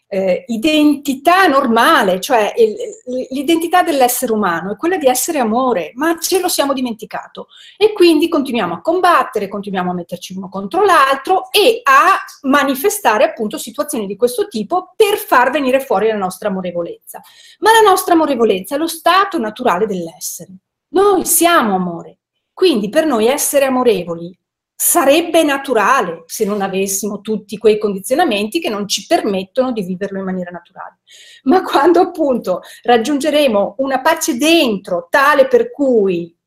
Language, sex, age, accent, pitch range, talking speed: Italian, female, 40-59, native, 215-330 Hz, 145 wpm